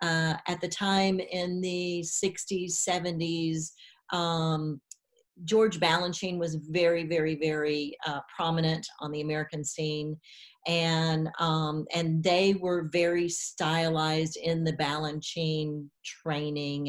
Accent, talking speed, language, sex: American, 115 wpm, English, female